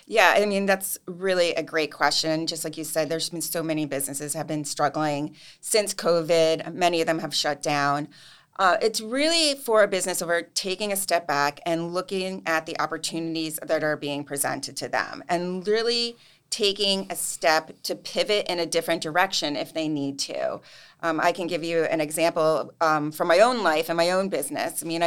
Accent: American